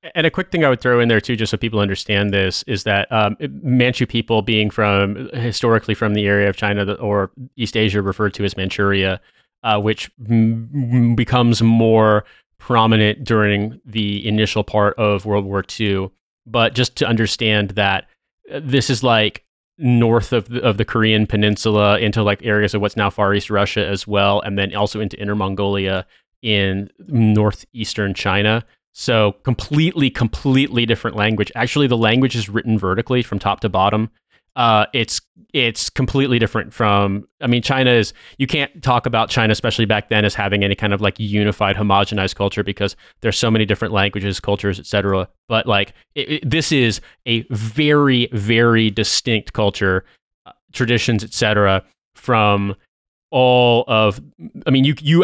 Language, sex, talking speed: English, male, 170 wpm